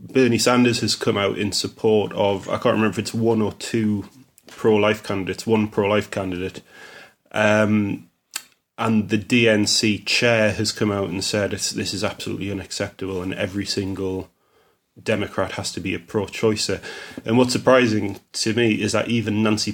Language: English